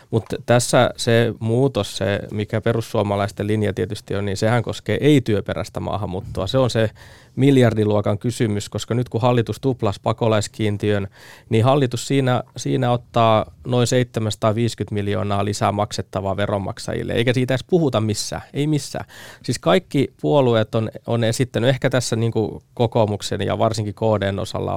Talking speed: 140 wpm